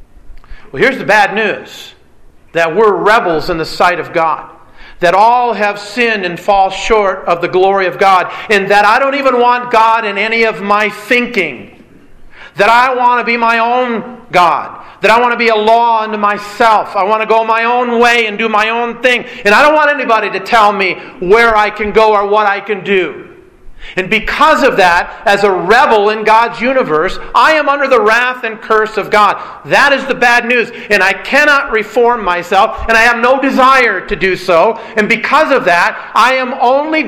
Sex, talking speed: male, 205 wpm